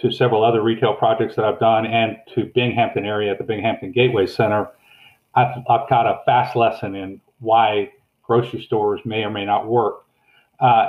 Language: English